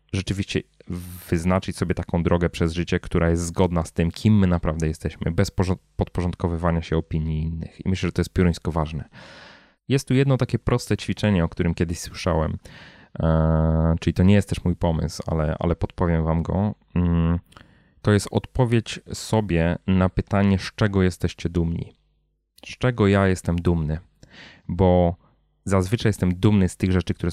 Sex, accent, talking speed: male, native, 160 wpm